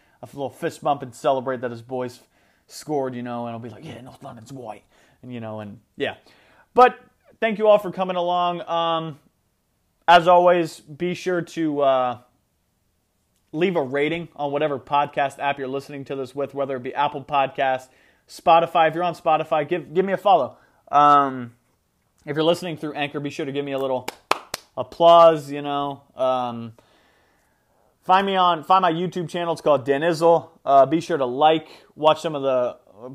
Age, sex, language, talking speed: 30-49, male, English, 185 wpm